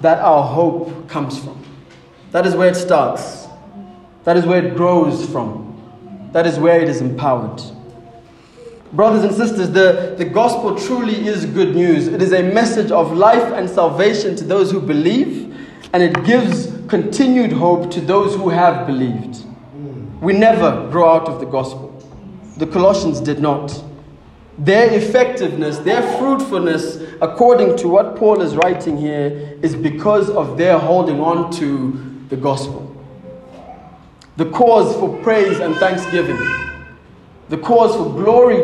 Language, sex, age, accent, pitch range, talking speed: English, male, 20-39, South African, 145-200 Hz, 150 wpm